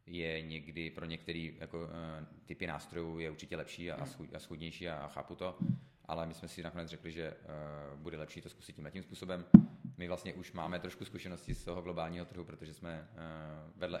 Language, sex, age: Czech, male, 30-49